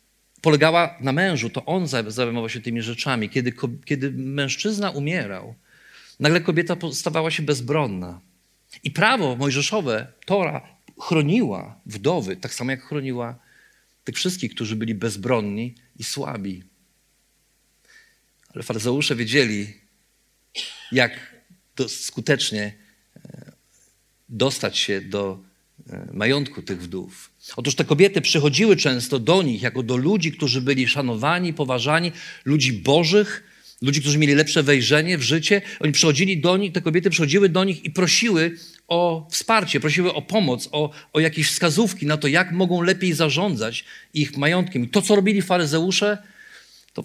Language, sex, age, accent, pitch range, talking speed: Polish, male, 40-59, native, 125-175 Hz, 130 wpm